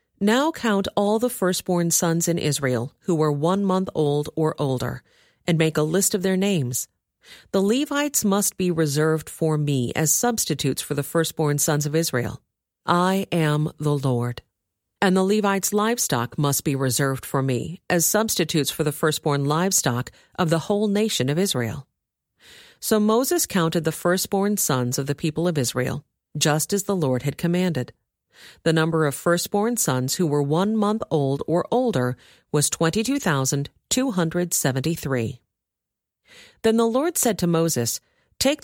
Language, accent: English, American